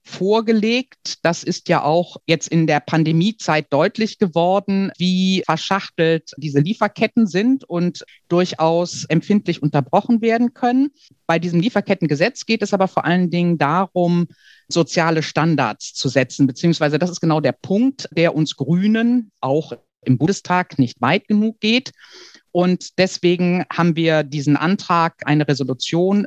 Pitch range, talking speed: 155-200 Hz, 135 wpm